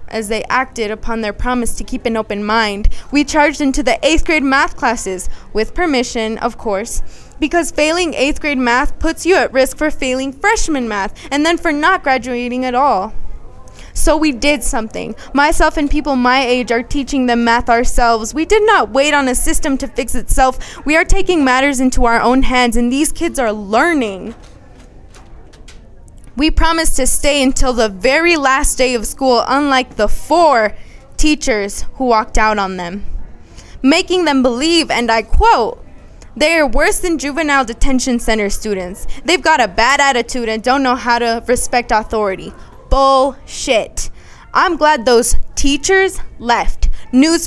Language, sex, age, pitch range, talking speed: English, female, 20-39, 235-300 Hz, 170 wpm